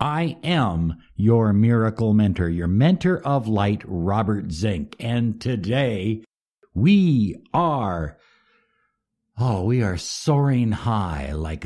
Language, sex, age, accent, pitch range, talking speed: English, male, 60-79, American, 100-145 Hz, 110 wpm